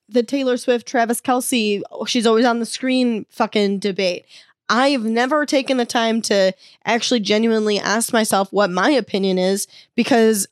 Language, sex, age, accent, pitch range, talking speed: English, female, 10-29, American, 195-235 Hz, 155 wpm